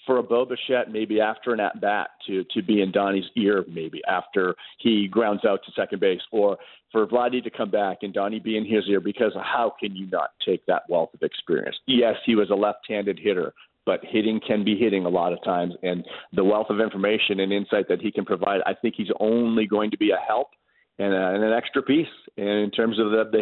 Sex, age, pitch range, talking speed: male, 40-59, 100-120 Hz, 230 wpm